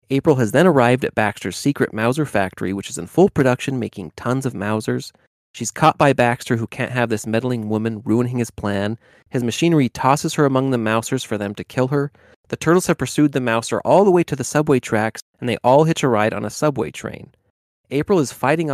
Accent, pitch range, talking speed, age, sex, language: American, 105-135 Hz, 220 wpm, 30-49, male, English